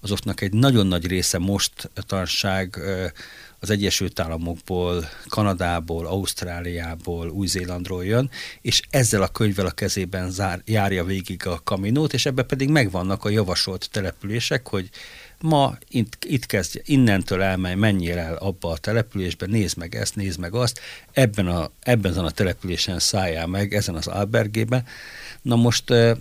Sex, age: male, 60-79